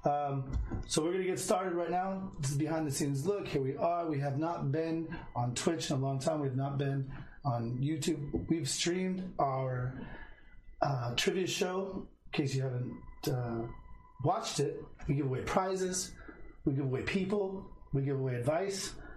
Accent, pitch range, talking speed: American, 135-180 Hz, 175 wpm